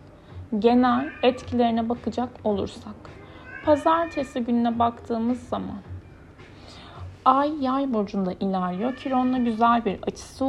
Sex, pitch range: female, 195-255 Hz